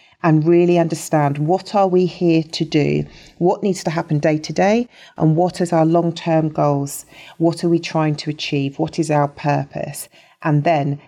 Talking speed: 185 wpm